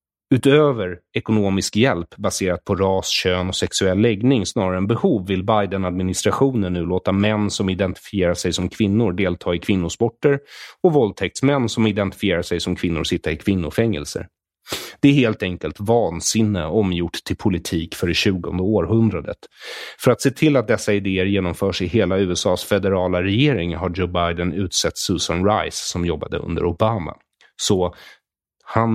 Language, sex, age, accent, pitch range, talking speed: English, male, 30-49, Swedish, 90-110 Hz, 150 wpm